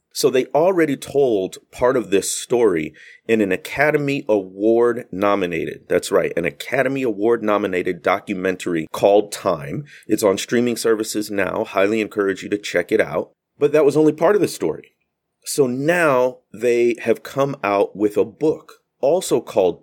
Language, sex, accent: English, male, American